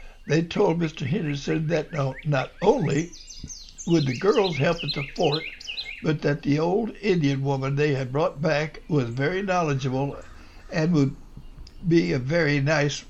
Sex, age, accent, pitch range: male, 60-79, American, 135-170 Hz